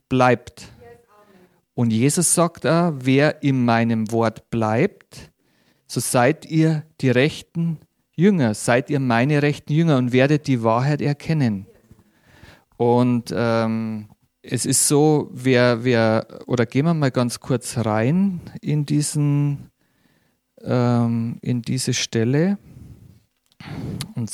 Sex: male